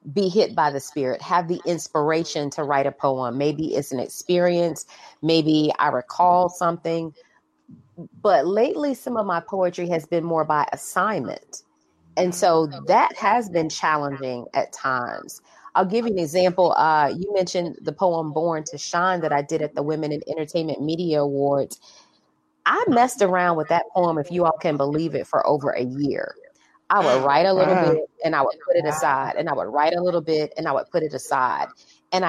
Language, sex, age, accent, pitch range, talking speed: English, female, 30-49, American, 150-185 Hz, 195 wpm